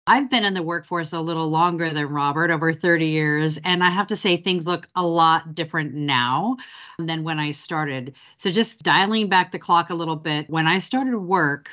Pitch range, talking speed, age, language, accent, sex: 155-190 Hz, 210 wpm, 40-59, English, American, female